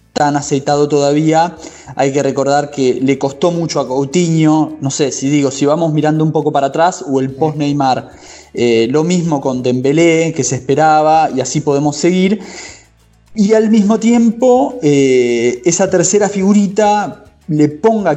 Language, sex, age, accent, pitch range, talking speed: Portuguese, male, 20-39, Argentinian, 135-175 Hz, 160 wpm